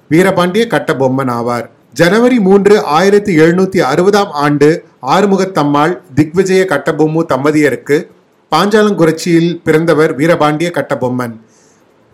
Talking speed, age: 90 wpm, 30-49